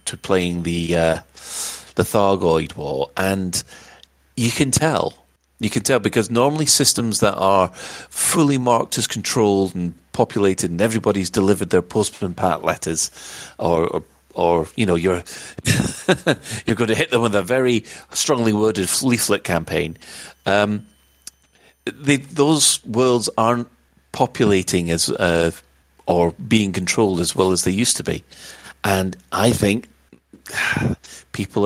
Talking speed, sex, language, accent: 135 wpm, male, English, British